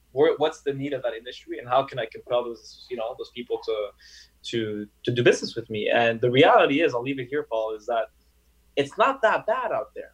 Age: 20-39